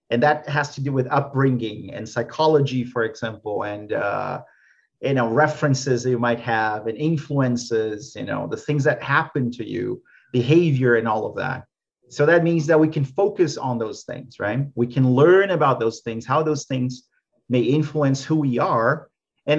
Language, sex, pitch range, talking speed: English, male, 125-155 Hz, 185 wpm